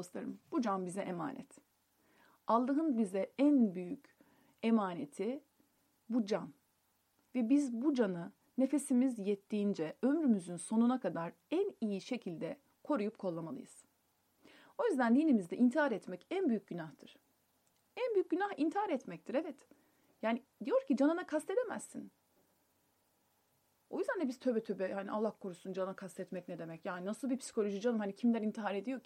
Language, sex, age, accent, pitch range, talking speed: Turkish, female, 30-49, native, 200-280 Hz, 140 wpm